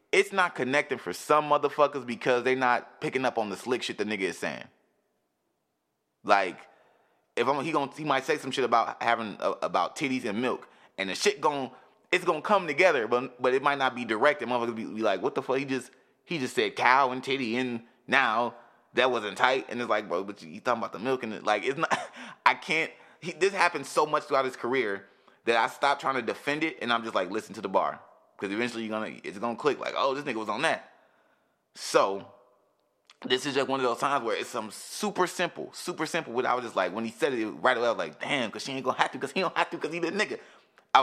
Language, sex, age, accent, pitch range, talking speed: English, male, 20-39, American, 115-150 Hz, 255 wpm